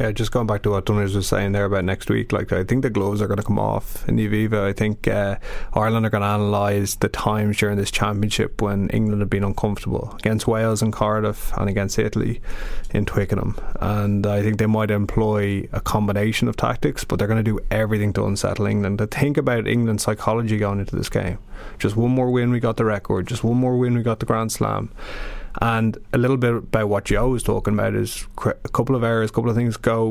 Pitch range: 100-115 Hz